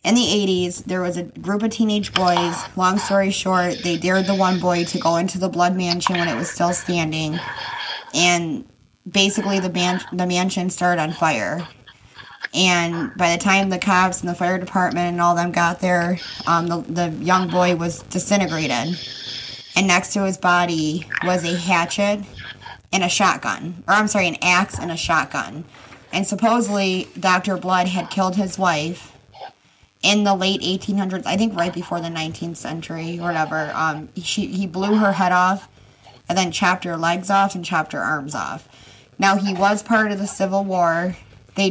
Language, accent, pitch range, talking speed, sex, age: English, American, 170-195 Hz, 185 wpm, female, 20-39